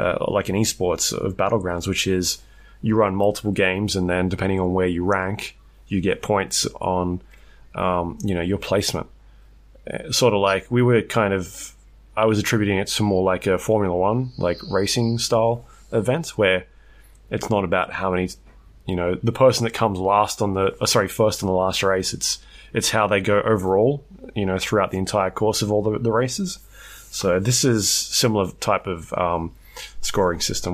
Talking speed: 190 wpm